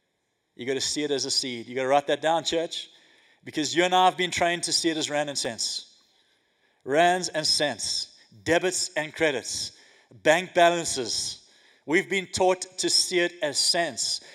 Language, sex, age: English, male, 30-49